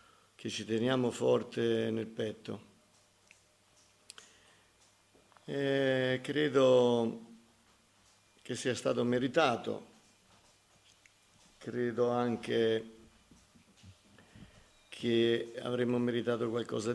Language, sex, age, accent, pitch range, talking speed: Italian, male, 50-69, native, 110-125 Hz, 65 wpm